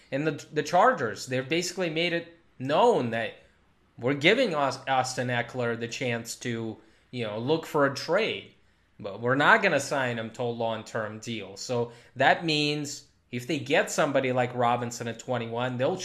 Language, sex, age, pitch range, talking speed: English, male, 20-39, 125-175 Hz, 170 wpm